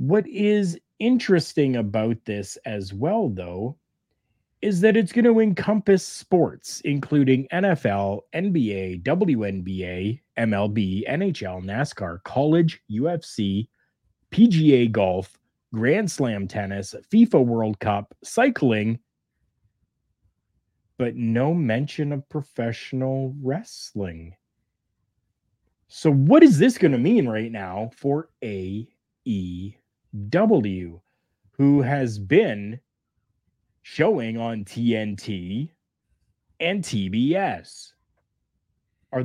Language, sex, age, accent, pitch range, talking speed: English, male, 30-49, American, 105-155 Hz, 90 wpm